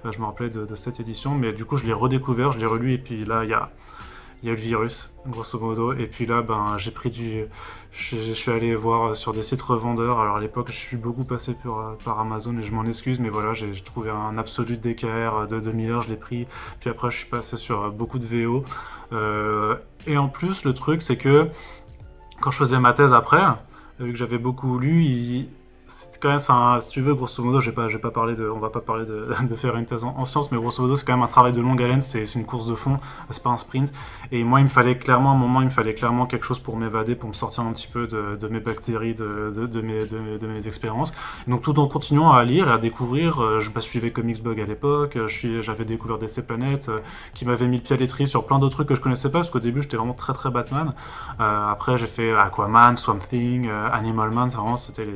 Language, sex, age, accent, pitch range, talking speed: French, male, 20-39, French, 110-125 Hz, 265 wpm